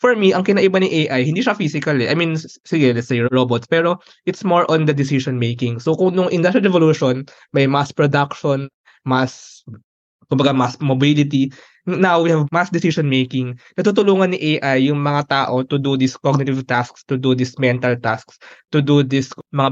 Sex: male